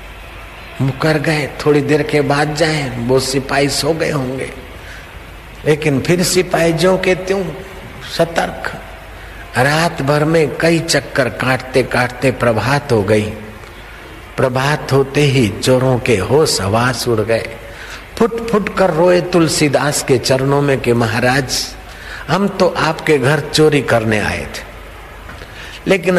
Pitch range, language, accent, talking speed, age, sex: 120-155 Hz, Hindi, native, 130 wpm, 60-79, male